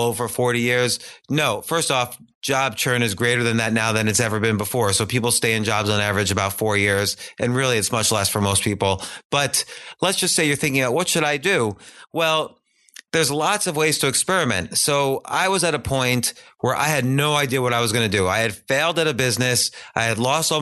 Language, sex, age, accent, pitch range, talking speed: English, male, 30-49, American, 115-145 Hz, 235 wpm